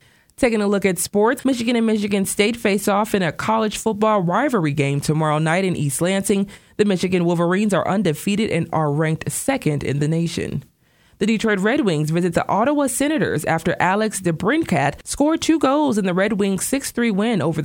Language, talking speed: English, 185 wpm